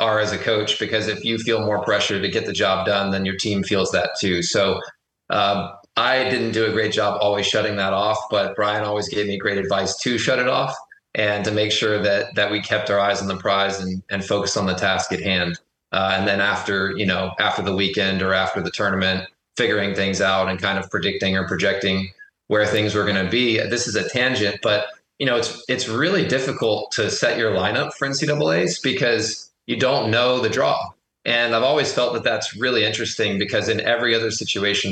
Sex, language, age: male, English, 20-39